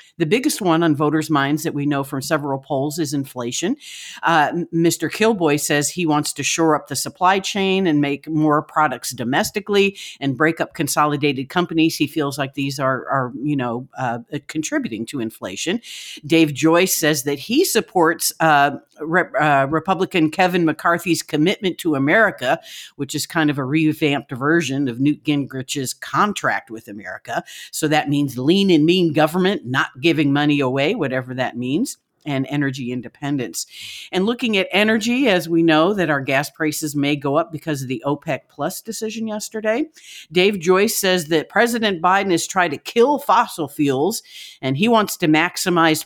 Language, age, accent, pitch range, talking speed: English, 50-69, American, 140-175 Hz, 170 wpm